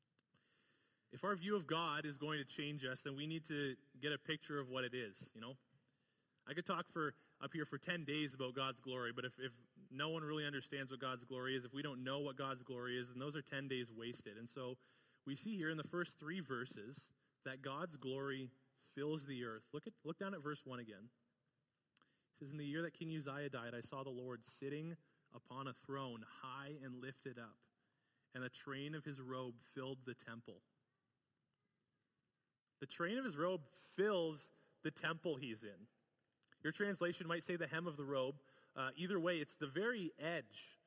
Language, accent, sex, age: English, American, male, 20-39